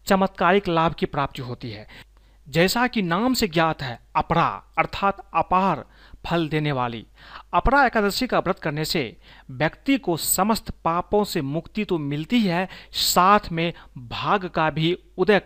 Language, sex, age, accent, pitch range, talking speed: Hindi, male, 40-59, native, 155-200 Hz, 150 wpm